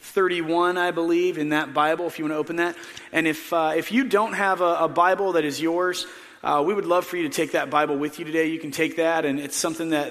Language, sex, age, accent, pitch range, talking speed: English, male, 30-49, American, 145-170 Hz, 275 wpm